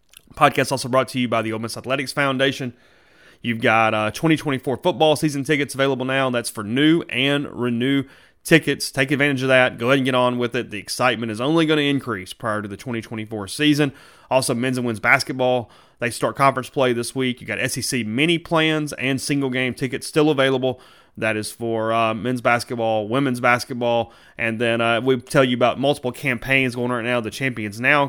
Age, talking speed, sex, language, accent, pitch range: 30-49, 200 wpm, male, English, American, 115-135 Hz